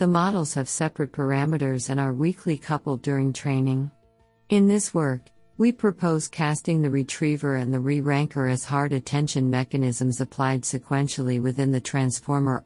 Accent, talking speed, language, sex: American, 145 wpm, English, female